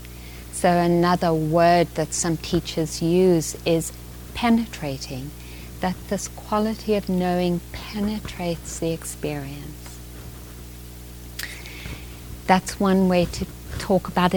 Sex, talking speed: female, 95 wpm